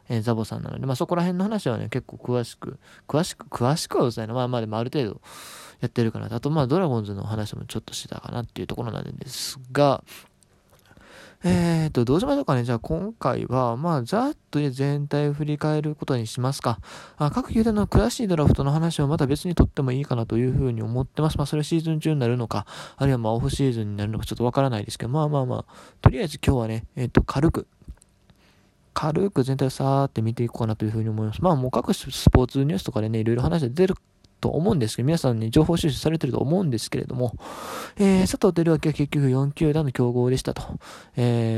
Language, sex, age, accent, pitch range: Japanese, male, 20-39, native, 120-155 Hz